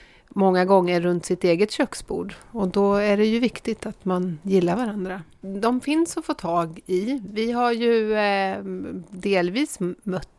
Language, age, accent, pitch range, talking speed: Swedish, 30-49, native, 175-210 Hz, 160 wpm